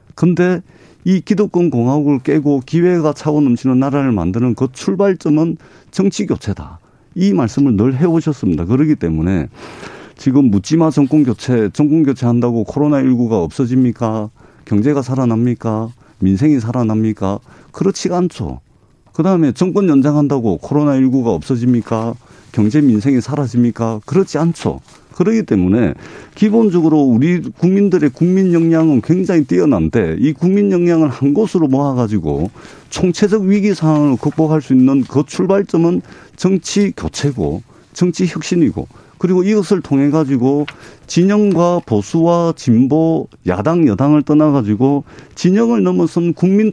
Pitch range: 120-175 Hz